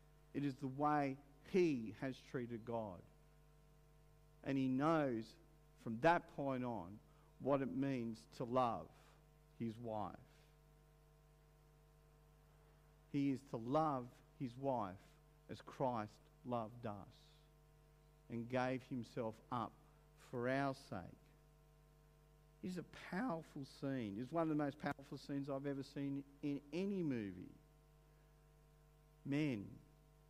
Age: 50-69